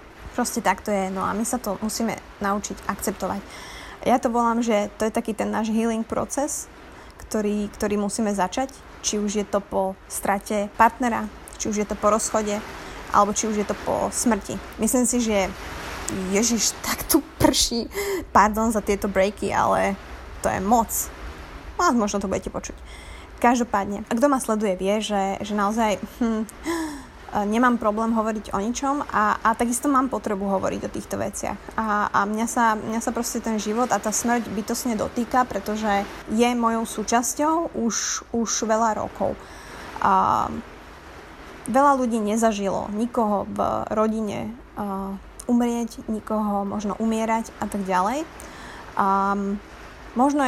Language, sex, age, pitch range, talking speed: Slovak, female, 20-39, 205-240 Hz, 155 wpm